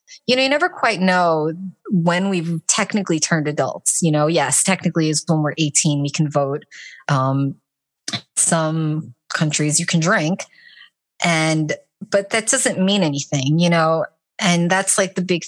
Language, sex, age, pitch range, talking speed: English, female, 30-49, 150-180 Hz, 160 wpm